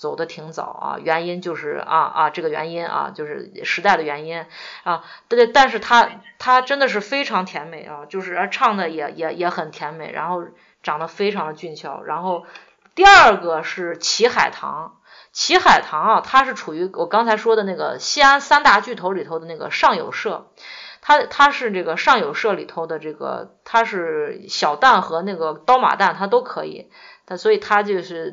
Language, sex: Chinese, female